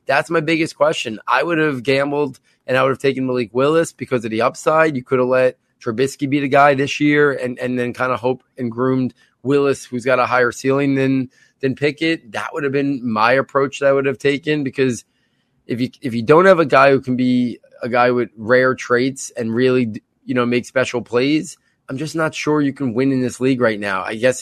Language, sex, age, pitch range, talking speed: English, male, 20-39, 120-135 Hz, 235 wpm